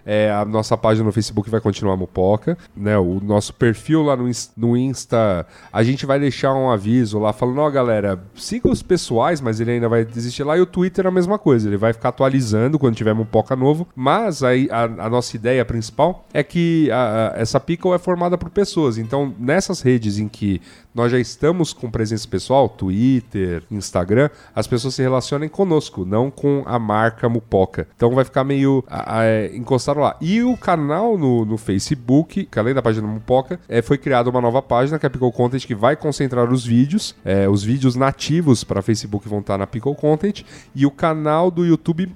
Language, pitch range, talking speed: Portuguese, 110-150 Hz, 200 wpm